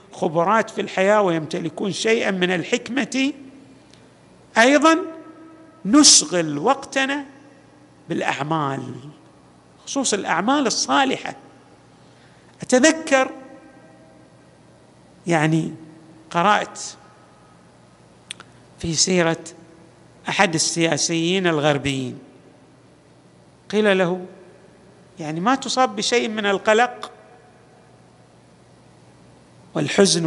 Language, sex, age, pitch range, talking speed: Arabic, male, 50-69, 165-240 Hz, 60 wpm